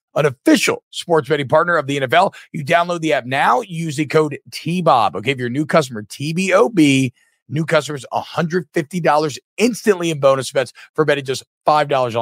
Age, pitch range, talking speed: 50-69, 120-165 Hz, 165 wpm